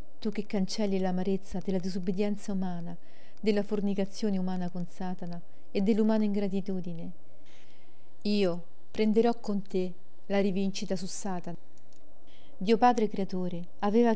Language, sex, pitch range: Italian, female, 180-220 Hz